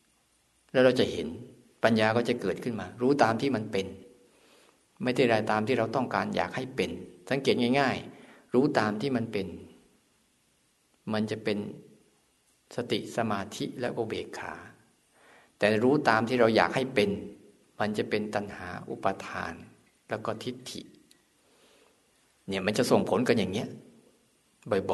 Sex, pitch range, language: male, 100-120 Hz, Thai